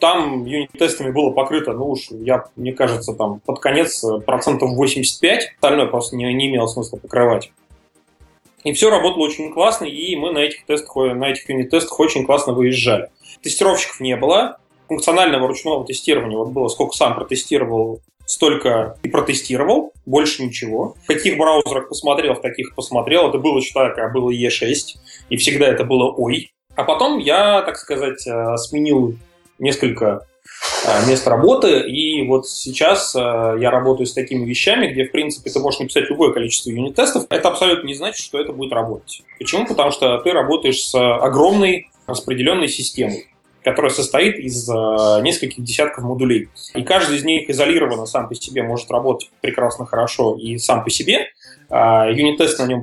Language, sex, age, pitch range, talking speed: Russian, male, 20-39, 120-150 Hz, 155 wpm